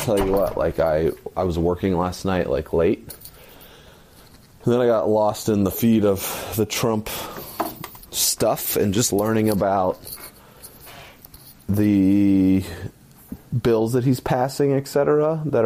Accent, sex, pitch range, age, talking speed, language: American, male, 85-115 Hz, 30-49, 135 wpm, English